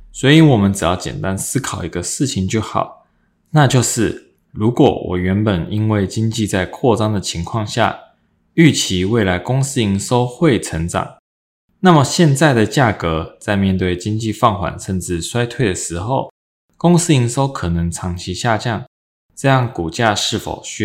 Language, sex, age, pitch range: Chinese, male, 20-39, 90-120 Hz